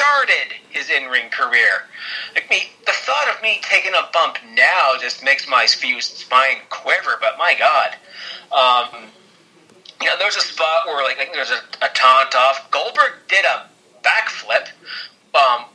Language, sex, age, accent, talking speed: English, male, 30-49, American, 155 wpm